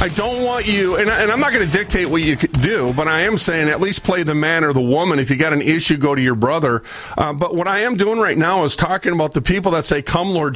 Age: 40-59